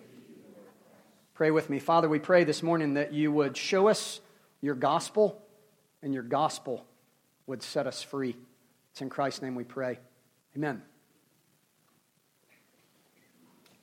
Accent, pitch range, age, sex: American, 155-195 Hz, 40-59, male